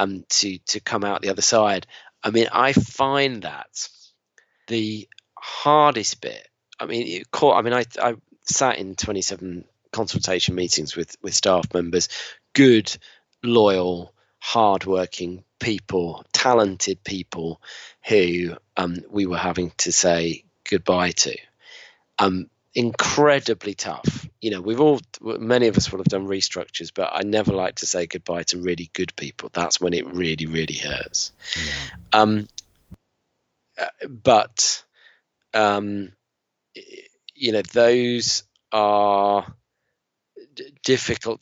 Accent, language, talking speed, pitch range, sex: British, English, 130 wpm, 90-115 Hz, male